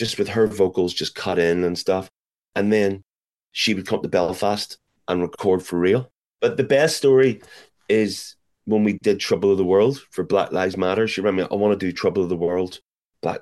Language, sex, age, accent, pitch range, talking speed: English, male, 30-49, British, 80-100 Hz, 215 wpm